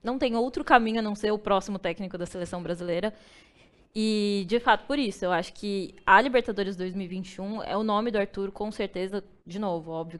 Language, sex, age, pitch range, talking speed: Portuguese, female, 10-29, 190-235 Hz, 200 wpm